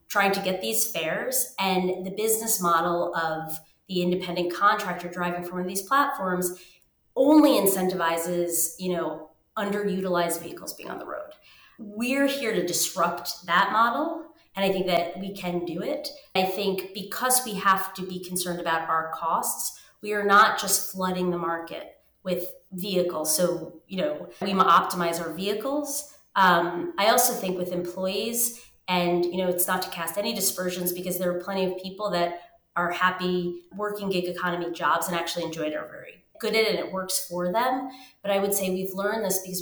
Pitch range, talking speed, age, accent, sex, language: 175-200 Hz, 185 wpm, 30-49, American, female, English